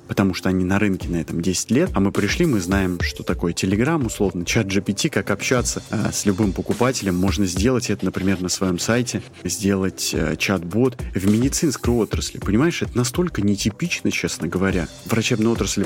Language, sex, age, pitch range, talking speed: Russian, male, 30-49, 95-120 Hz, 170 wpm